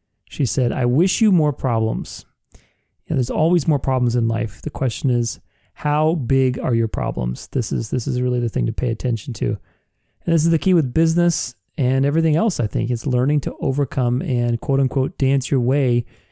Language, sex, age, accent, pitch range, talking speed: English, male, 30-49, American, 125-155 Hz, 205 wpm